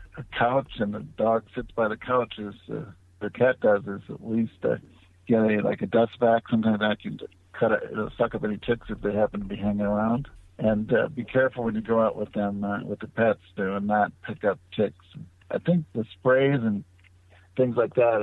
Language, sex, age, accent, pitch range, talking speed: English, male, 60-79, American, 105-125 Hz, 225 wpm